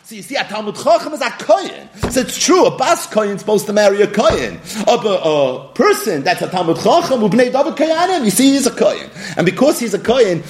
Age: 30-49